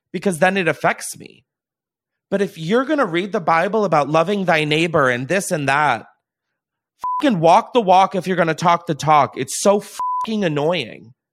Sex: male